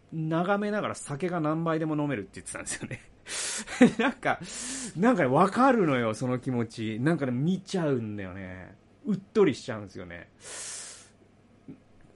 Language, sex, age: Japanese, male, 30-49